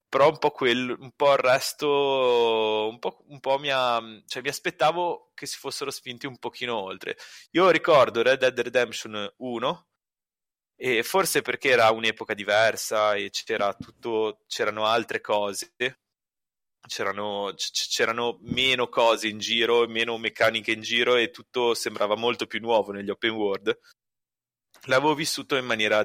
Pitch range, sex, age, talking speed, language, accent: 100-125 Hz, male, 20-39, 145 wpm, Italian, native